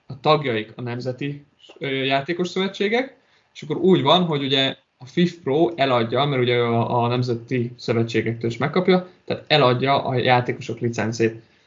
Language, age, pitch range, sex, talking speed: Hungarian, 20-39, 115-135 Hz, male, 145 wpm